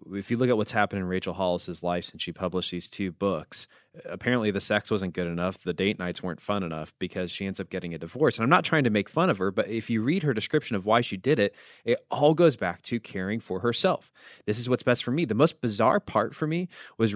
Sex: male